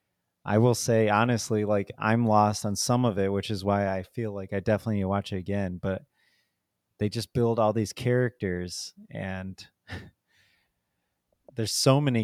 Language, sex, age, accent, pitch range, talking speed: English, male, 30-49, American, 100-120 Hz, 160 wpm